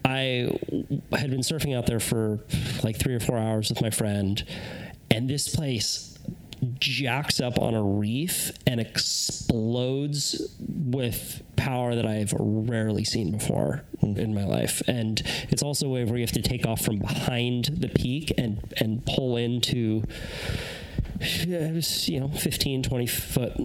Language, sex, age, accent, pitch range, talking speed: English, male, 30-49, American, 110-135 Hz, 150 wpm